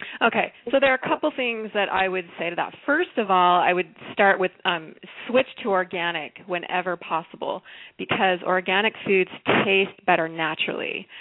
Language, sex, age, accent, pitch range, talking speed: English, female, 20-39, American, 180-215 Hz, 170 wpm